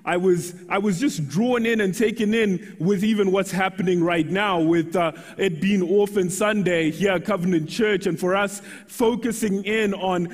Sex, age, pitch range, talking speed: male, 20-39, 190-230 Hz, 185 wpm